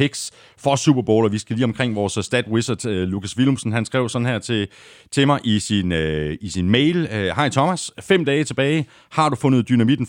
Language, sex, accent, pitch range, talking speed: Danish, male, native, 95-135 Hz, 200 wpm